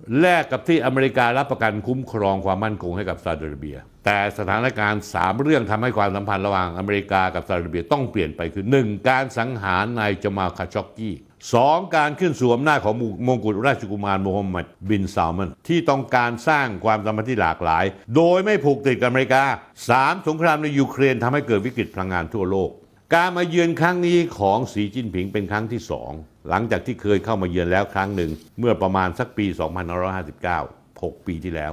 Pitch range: 95-135 Hz